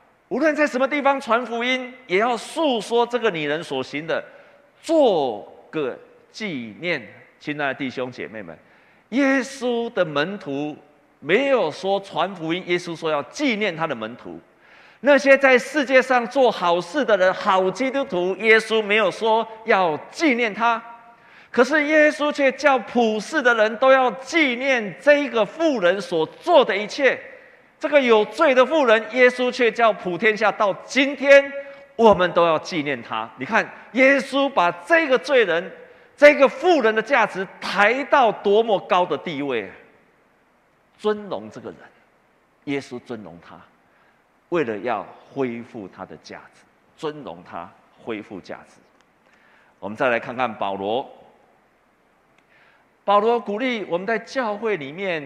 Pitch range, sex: 180-270 Hz, male